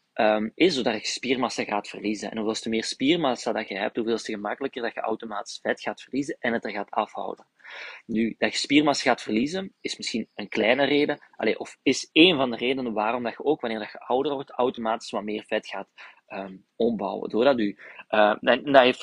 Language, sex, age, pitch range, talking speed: Dutch, male, 20-39, 110-145 Hz, 185 wpm